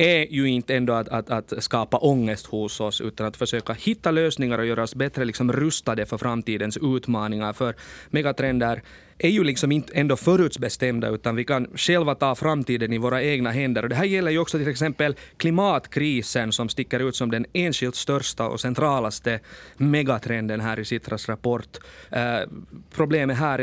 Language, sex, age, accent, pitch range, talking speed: Swedish, male, 30-49, Finnish, 115-145 Hz, 175 wpm